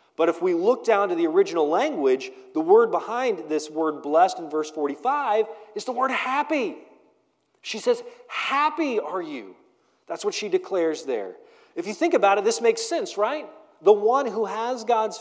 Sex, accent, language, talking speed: male, American, English, 180 wpm